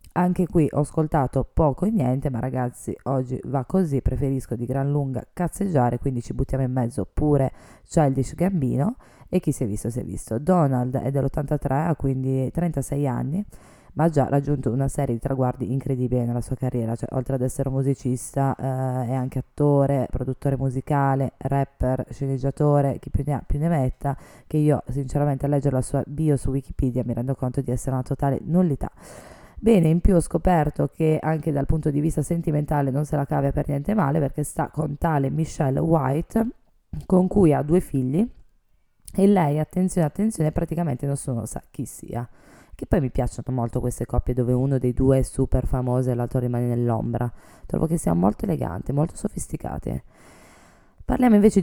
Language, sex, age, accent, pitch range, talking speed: Italian, female, 20-39, native, 130-155 Hz, 180 wpm